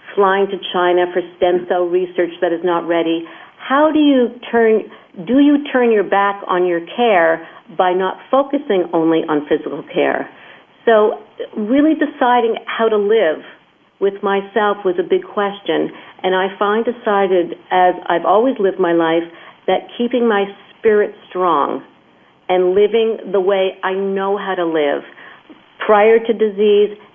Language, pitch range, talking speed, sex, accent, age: English, 175-215 Hz, 150 wpm, female, American, 50-69